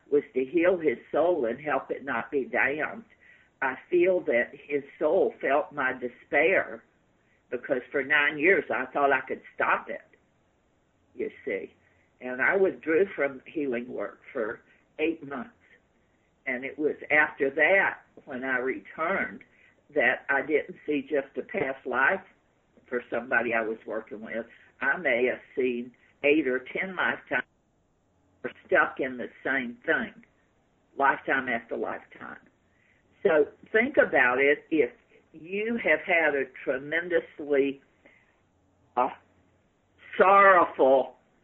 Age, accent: 50-69, American